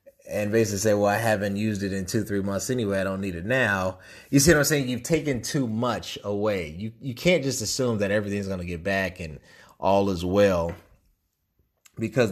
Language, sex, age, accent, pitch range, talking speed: English, male, 30-49, American, 95-115 Hz, 210 wpm